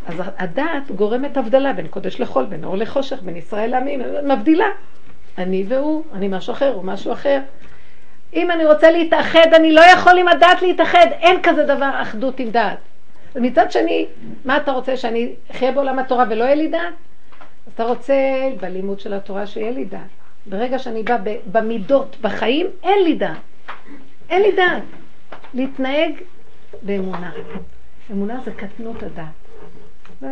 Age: 50-69